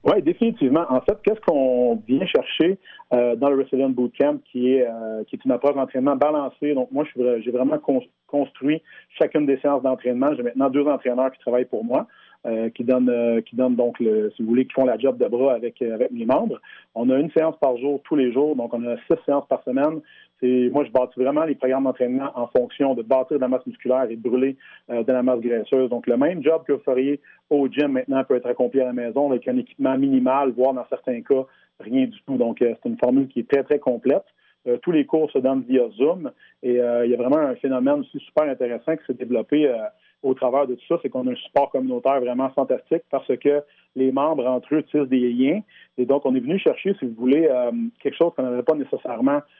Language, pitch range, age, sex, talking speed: French, 125-145 Hz, 40-59, male, 240 wpm